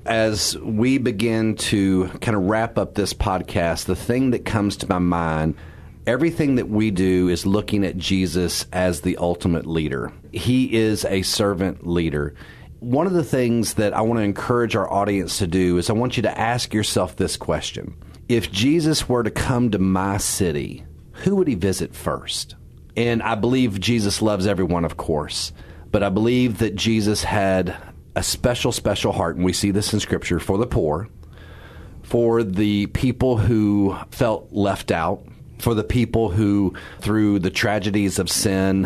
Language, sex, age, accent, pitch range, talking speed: English, male, 40-59, American, 90-115 Hz, 175 wpm